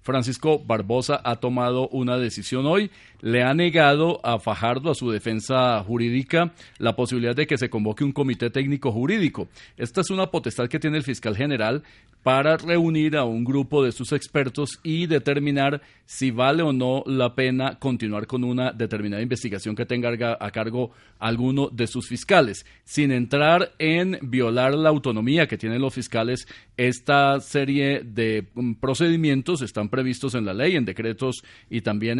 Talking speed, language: 160 wpm, Spanish